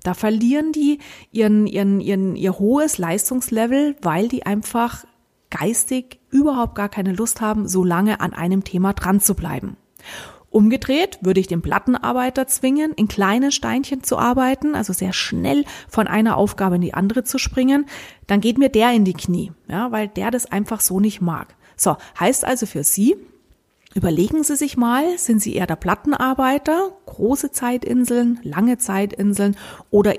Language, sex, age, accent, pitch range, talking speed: German, female, 30-49, German, 195-260 Hz, 165 wpm